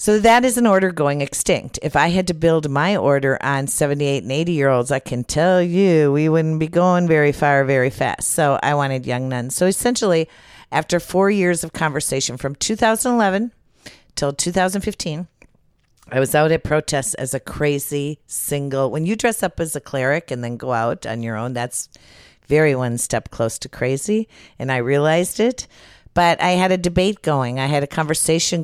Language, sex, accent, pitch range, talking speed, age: English, female, American, 130-165 Hz, 190 wpm, 50-69